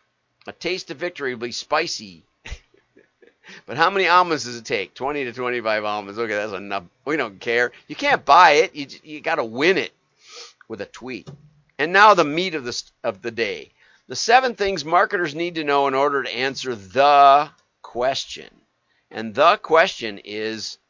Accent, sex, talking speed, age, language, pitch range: American, male, 180 wpm, 50-69, English, 120-175 Hz